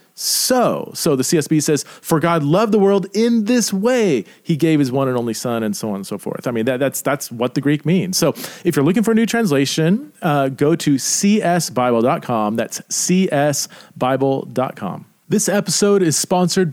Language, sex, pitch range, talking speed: English, male, 130-175 Hz, 185 wpm